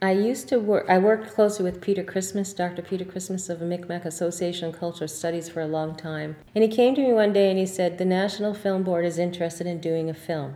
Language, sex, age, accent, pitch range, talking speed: English, female, 40-59, American, 150-190 Hz, 250 wpm